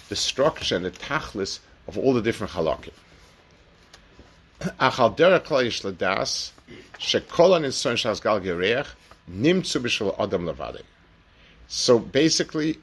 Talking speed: 55 wpm